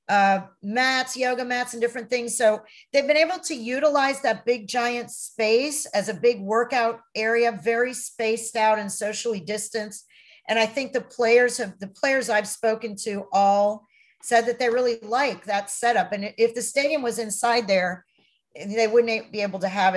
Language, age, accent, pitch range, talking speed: English, 50-69, American, 210-250 Hz, 175 wpm